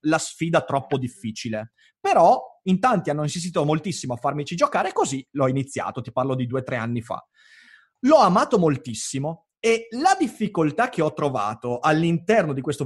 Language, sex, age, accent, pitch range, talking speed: Italian, male, 30-49, native, 130-210 Hz, 170 wpm